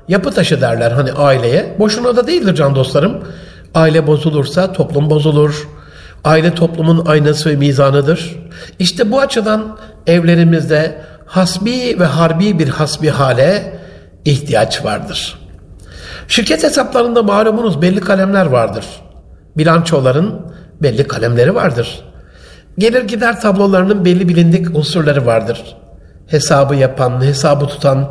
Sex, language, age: male, Turkish, 60-79